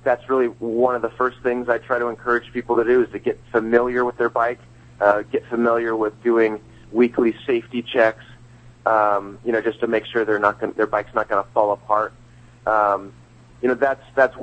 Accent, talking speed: American, 215 wpm